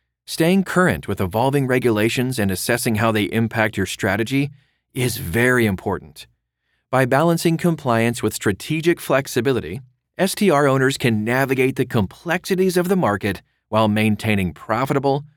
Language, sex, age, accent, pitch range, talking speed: English, male, 40-59, American, 105-145 Hz, 130 wpm